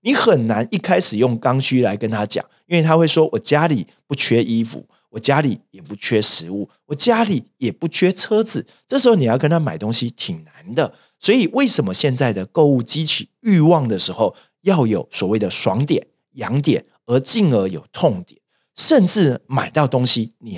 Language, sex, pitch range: Chinese, male, 125-175 Hz